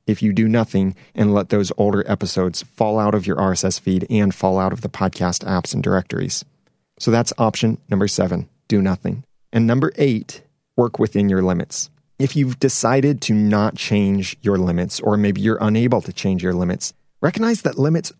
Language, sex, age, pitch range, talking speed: English, male, 30-49, 100-125 Hz, 190 wpm